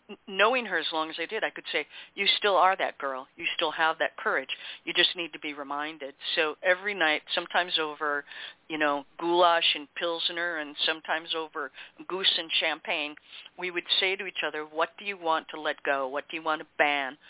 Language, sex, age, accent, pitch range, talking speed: English, female, 50-69, American, 150-175 Hz, 210 wpm